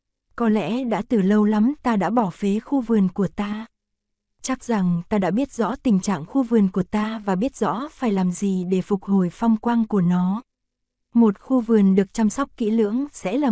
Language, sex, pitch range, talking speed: Vietnamese, female, 200-235 Hz, 220 wpm